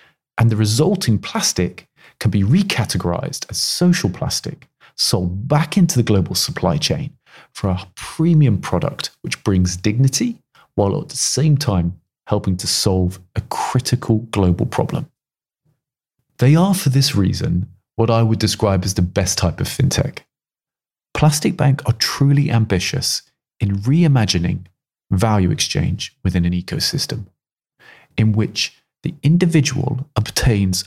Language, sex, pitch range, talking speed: English, male, 95-140 Hz, 130 wpm